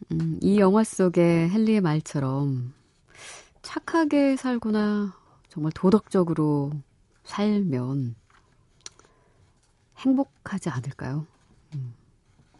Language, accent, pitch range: Korean, native, 130-200 Hz